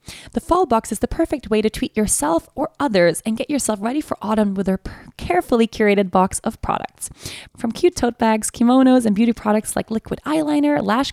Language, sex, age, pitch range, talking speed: English, female, 20-39, 200-265 Hz, 200 wpm